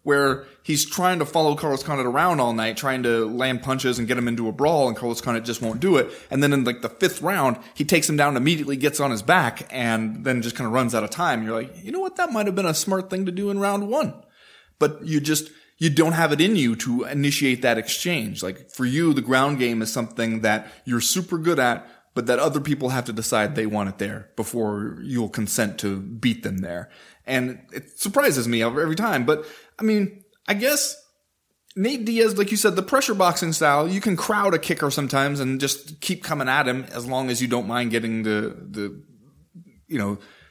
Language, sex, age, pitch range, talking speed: English, male, 20-39, 120-175 Hz, 230 wpm